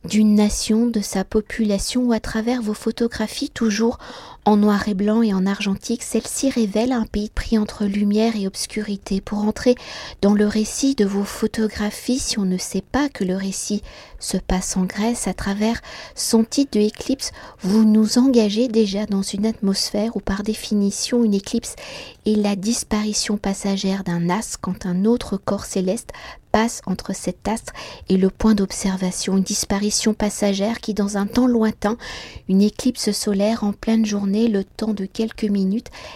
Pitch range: 195-225 Hz